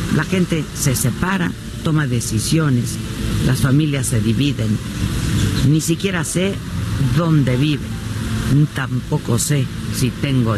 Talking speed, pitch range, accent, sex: 115 wpm, 110-150 Hz, Mexican, female